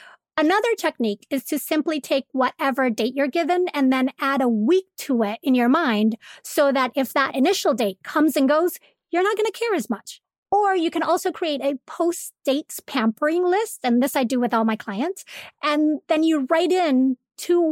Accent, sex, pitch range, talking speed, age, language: American, female, 245-320 Hz, 200 wpm, 30-49, English